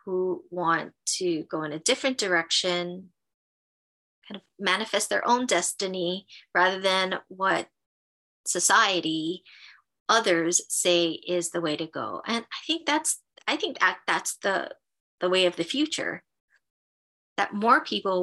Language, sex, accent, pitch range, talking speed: English, female, American, 170-200 Hz, 140 wpm